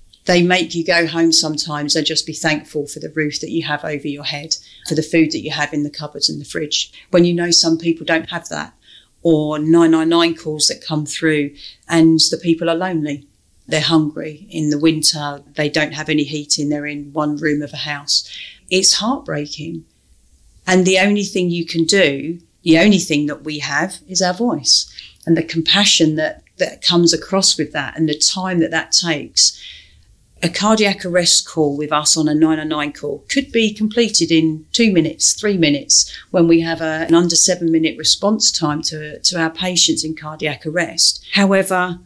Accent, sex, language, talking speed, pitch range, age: British, female, English, 195 wpm, 150-175 Hz, 40-59